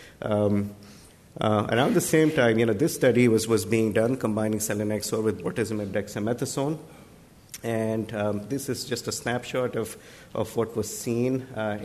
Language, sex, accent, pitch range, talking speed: English, male, Indian, 105-120 Hz, 165 wpm